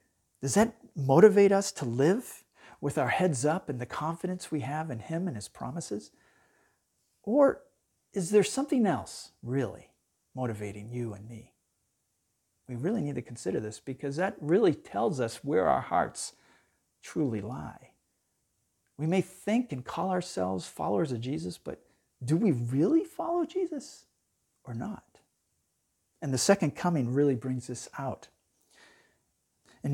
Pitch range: 125-180 Hz